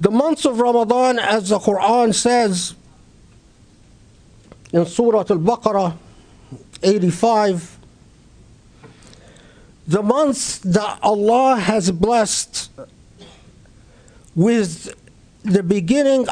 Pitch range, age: 175-220 Hz, 50-69